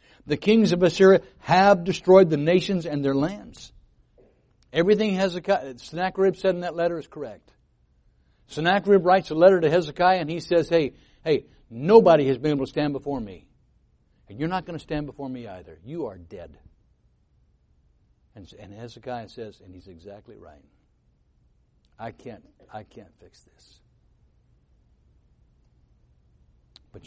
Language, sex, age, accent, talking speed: English, male, 60-79, American, 145 wpm